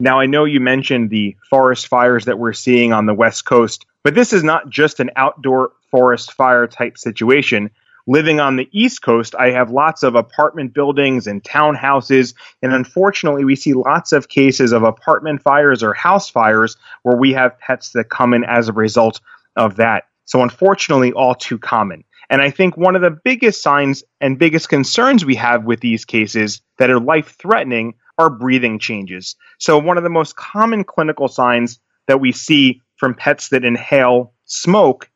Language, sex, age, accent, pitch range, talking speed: English, male, 30-49, American, 125-155 Hz, 180 wpm